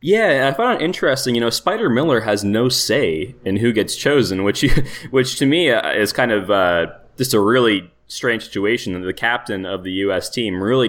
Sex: male